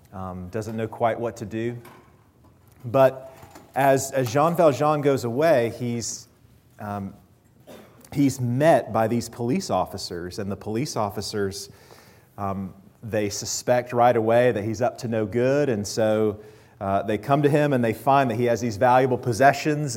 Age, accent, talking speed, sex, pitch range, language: 40-59, American, 160 wpm, male, 105-130 Hz, English